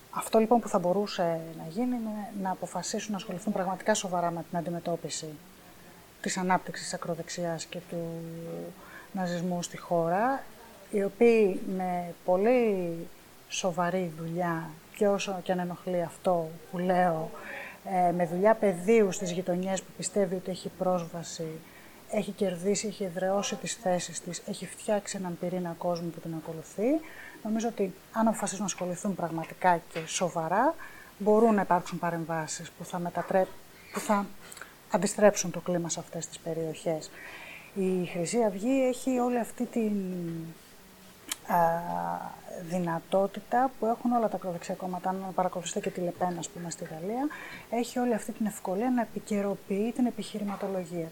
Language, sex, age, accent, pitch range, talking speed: Greek, female, 20-39, native, 175-210 Hz, 140 wpm